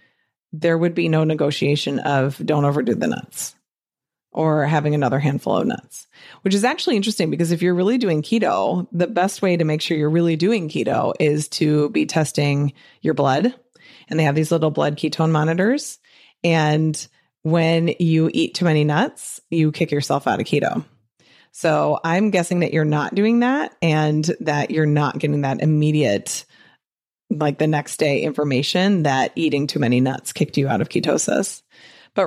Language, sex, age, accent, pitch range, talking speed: English, female, 30-49, American, 145-175 Hz, 175 wpm